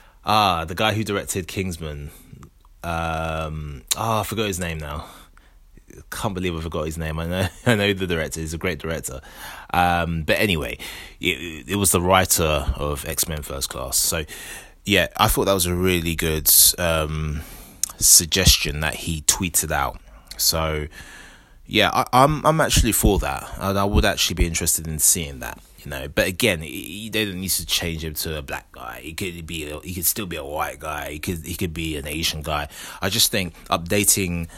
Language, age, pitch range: English, 20-39, 80-95 Hz